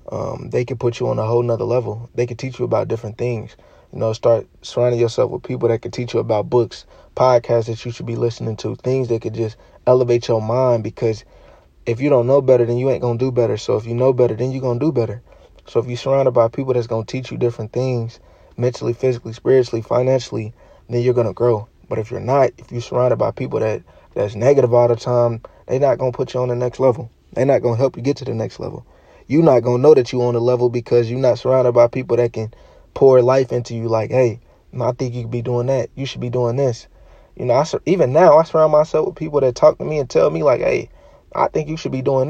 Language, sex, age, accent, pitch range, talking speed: English, male, 20-39, American, 115-130 Hz, 260 wpm